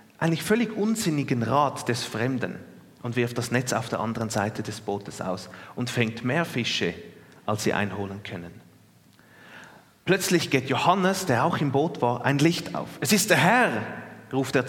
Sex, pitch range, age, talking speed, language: male, 115-160 Hz, 30-49, 170 wpm, German